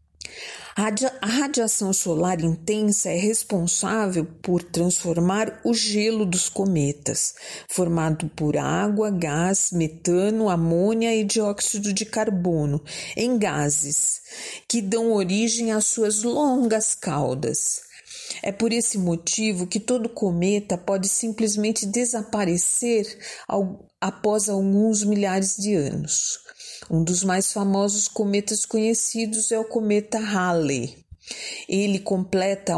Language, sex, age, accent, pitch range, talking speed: Portuguese, female, 50-69, Brazilian, 175-215 Hz, 105 wpm